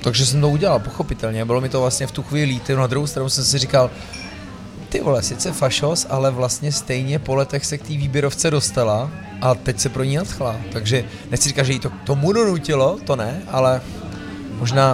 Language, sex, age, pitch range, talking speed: Czech, male, 30-49, 115-140 Hz, 205 wpm